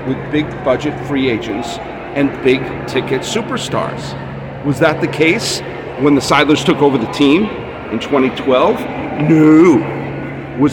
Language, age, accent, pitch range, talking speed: English, 50-69, American, 120-150 Hz, 125 wpm